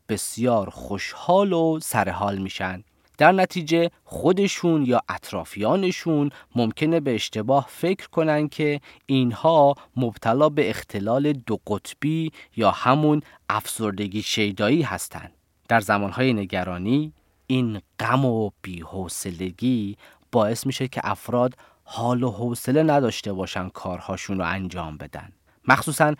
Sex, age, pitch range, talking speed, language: male, 30-49, 100-150 Hz, 110 wpm, Persian